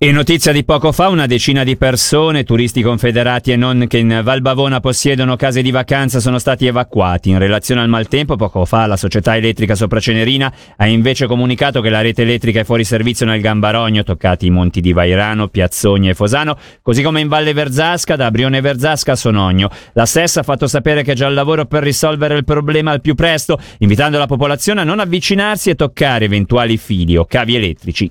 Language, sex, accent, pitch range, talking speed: Italian, male, native, 115-155 Hz, 200 wpm